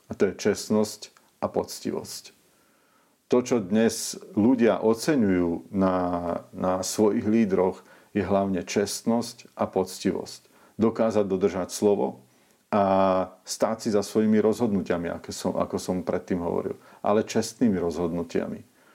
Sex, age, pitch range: male, 50-69, 95-115 Hz